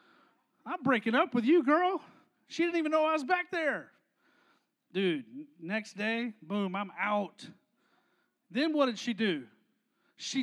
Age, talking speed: 30-49, 150 wpm